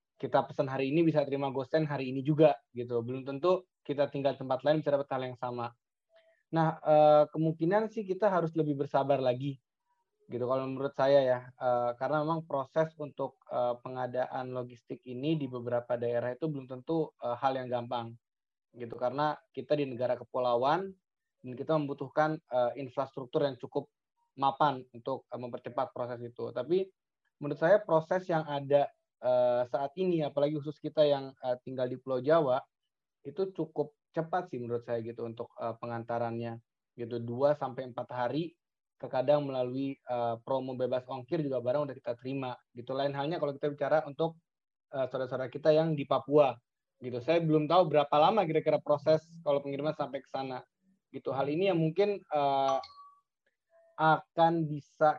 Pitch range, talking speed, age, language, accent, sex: 125-160 Hz, 160 wpm, 20-39, Indonesian, native, male